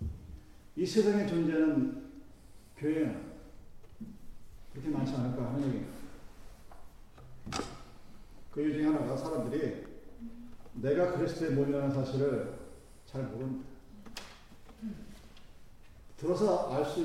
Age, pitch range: 40-59, 165-255 Hz